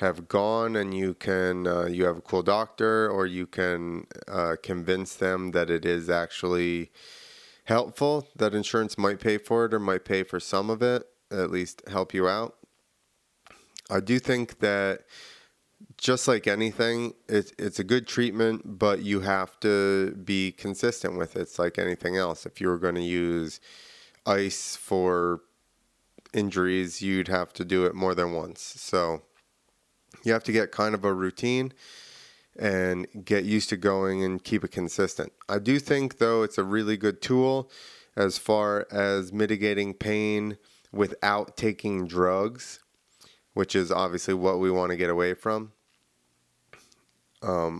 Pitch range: 90-110 Hz